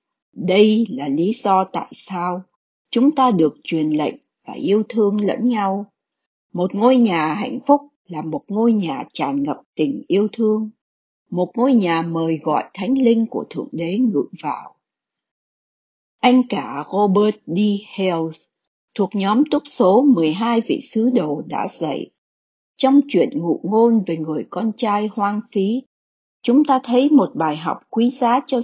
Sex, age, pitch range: female, 60-79, 190-255 Hz